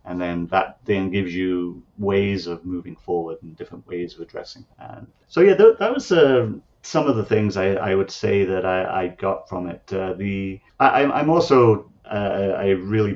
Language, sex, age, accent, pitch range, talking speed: English, male, 30-49, British, 90-105 Hz, 200 wpm